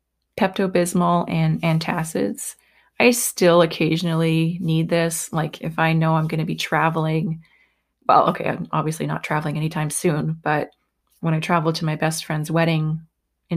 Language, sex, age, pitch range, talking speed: English, female, 30-49, 160-185 Hz, 155 wpm